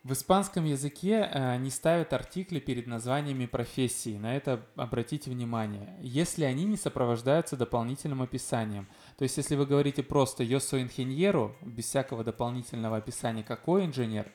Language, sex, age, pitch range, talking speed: Russian, male, 20-39, 115-145 Hz, 145 wpm